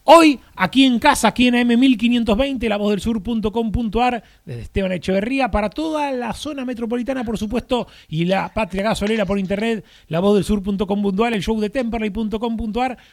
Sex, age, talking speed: male, 30-49, 155 wpm